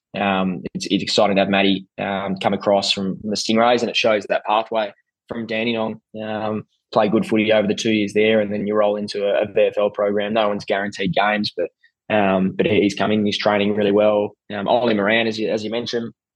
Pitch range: 100-110 Hz